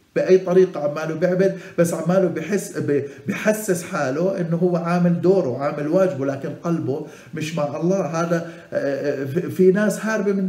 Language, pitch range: Arabic, 115-155 Hz